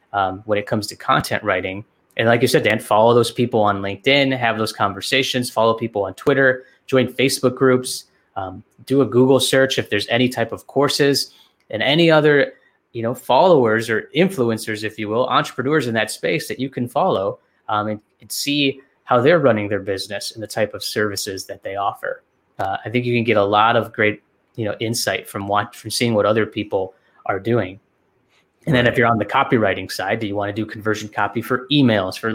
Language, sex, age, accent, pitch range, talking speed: English, male, 20-39, American, 105-130 Hz, 210 wpm